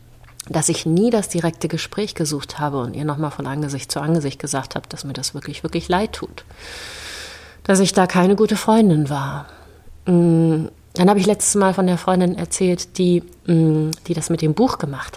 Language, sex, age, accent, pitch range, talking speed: German, female, 30-49, German, 145-200 Hz, 185 wpm